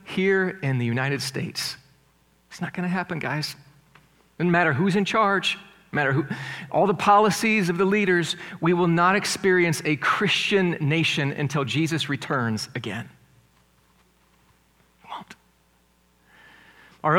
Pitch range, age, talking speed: 140-185 Hz, 40-59, 130 wpm